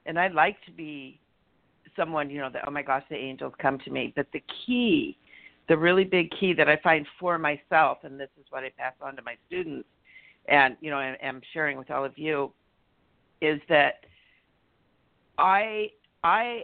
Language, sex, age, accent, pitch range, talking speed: English, female, 50-69, American, 135-165 Hz, 190 wpm